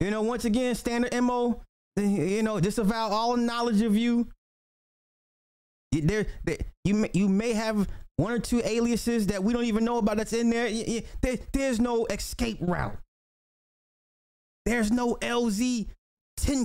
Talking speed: 135 wpm